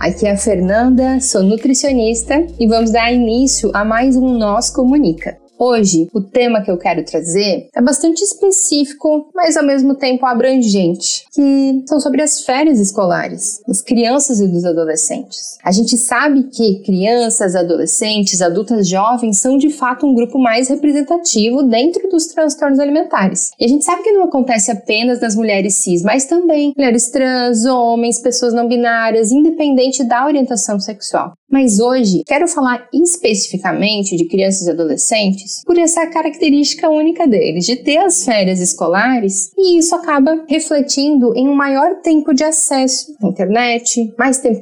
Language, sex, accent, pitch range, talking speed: Portuguese, female, Brazilian, 205-280 Hz, 155 wpm